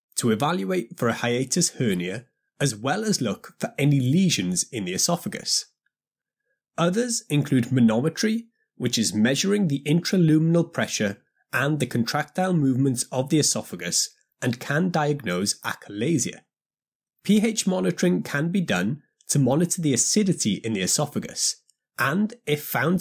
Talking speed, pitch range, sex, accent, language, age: 135 wpm, 130-195 Hz, male, British, English, 30-49